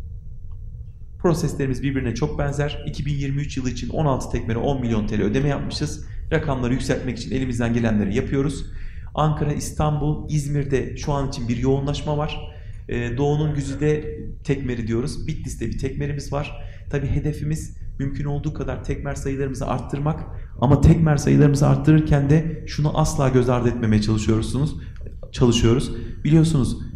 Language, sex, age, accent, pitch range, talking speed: Turkish, male, 40-59, native, 115-145 Hz, 125 wpm